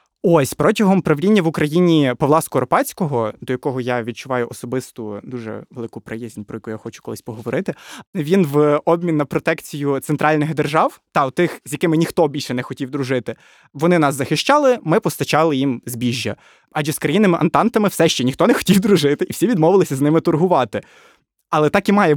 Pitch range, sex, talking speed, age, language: 130-175 Hz, male, 175 wpm, 20-39, Ukrainian